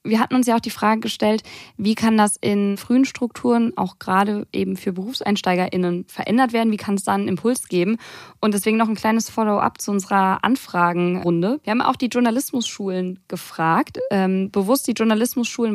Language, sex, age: German, female, 20-39